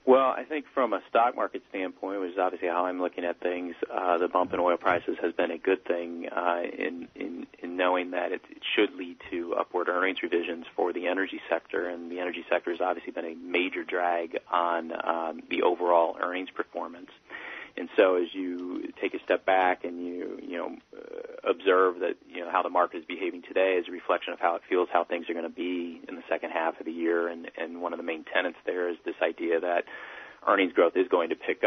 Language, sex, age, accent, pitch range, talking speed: English, male, 30-49, American, 85-90 Hz, 230 wpm